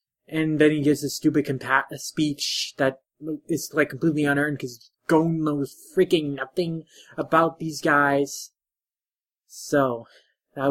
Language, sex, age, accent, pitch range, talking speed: English, male, 20-39, American, 130-160 Hz, 130 wpm